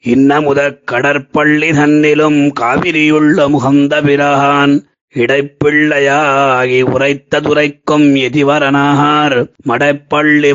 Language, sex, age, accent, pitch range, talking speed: Tamil, male, 30-49, native, 140-155 Hz, 55 wpm